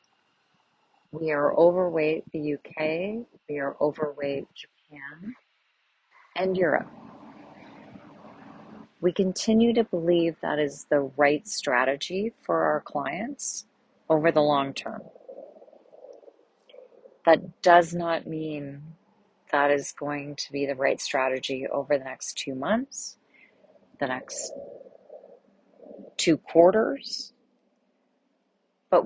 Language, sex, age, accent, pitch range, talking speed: English, female, 30-49, American, 145-210 Hz, 100 wpm